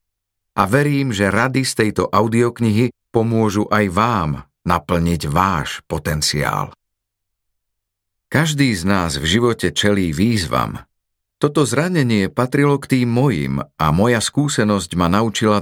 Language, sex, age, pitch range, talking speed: Slovak, male, 40-59, 95-125 Hz, 120 wpm